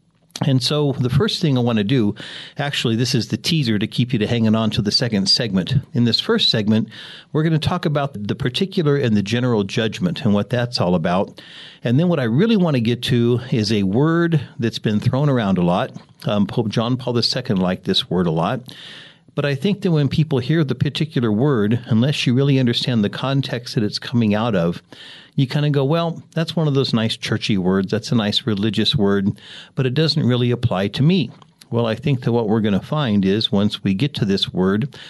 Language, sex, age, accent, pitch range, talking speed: English, male, 50-69, American, 110-145 Hz, 225 wpm